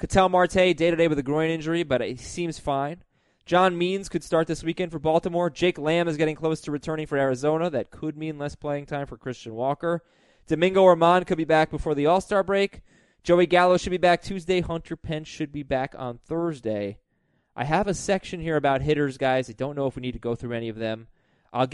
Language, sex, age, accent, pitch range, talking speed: English, male, 20-39, American, 120-170 Hz, 220 wpm